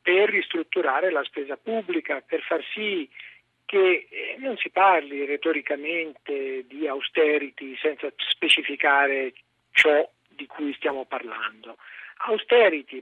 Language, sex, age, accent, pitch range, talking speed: Italian, male, 50-69, native, 155-250 Hz, 105 wpm